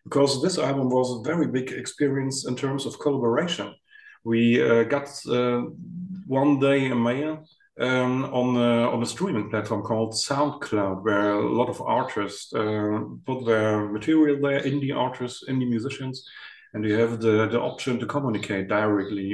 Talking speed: 160 wpm